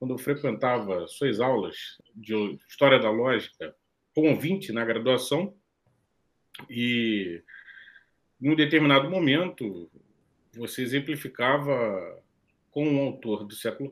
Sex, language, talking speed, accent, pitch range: male, Portuguese, 105 wpm, Brazilian, 110-150 Hz